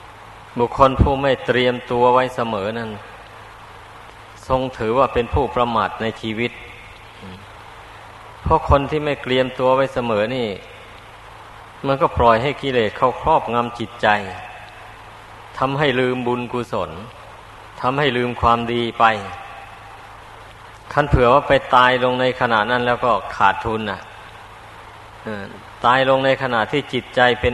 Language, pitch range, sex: Thai, 110-125 Hz, male